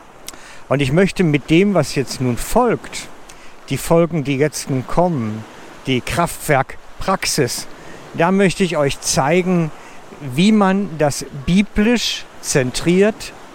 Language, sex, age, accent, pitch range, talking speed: German, male, 60-79, German, 150-200 Hz, 120 wpm